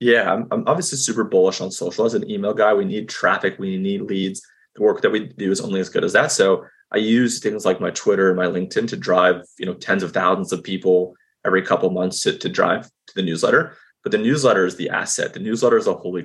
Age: 30-49